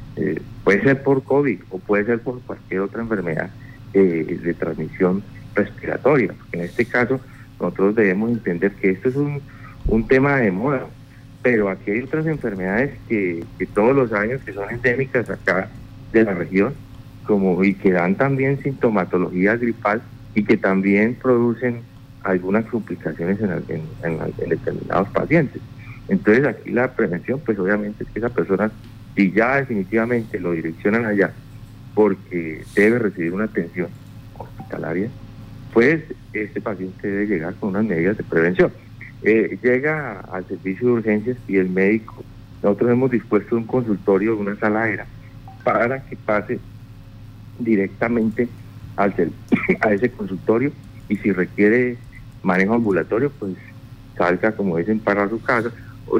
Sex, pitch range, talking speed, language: male, 100-120 Hz, 145 wpm, Spanish